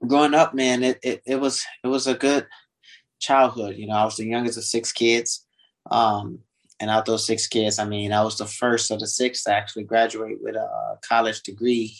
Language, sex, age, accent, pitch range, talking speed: English, male, 20-39, American, 105-120 Hz, 220 wpm